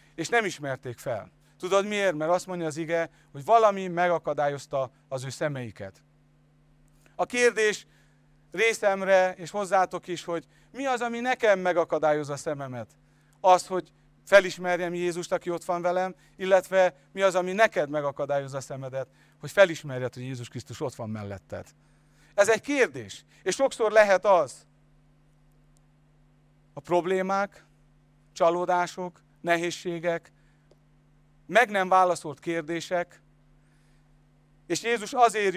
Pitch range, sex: 145-195 Hz, male